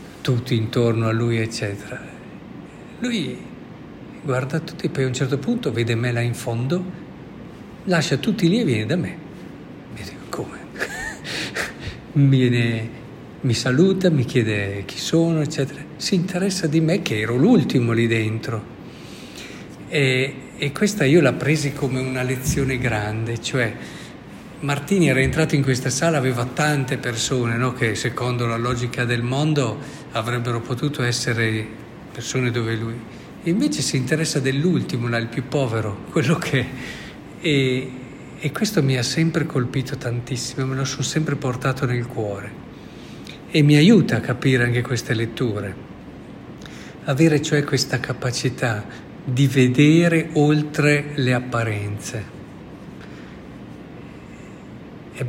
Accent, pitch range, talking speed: native, 115-145 Hz, 125 wpm